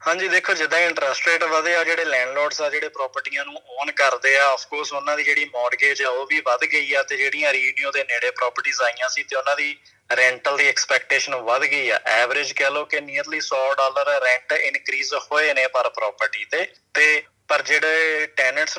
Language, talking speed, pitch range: Punjabi, 180 wpm, 135-165 Hz